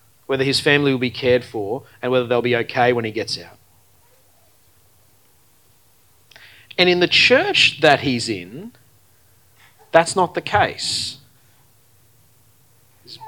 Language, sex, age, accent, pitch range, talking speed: English, male, 30-49, Australian, 120-160 Hz, 125 wpm